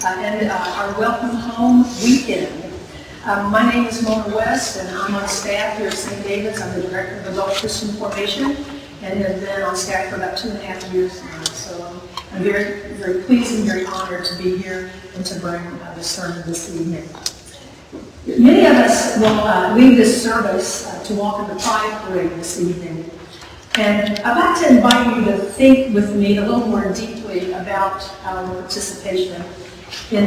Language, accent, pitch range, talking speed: English, American, 190-245 Hz, 190 wpm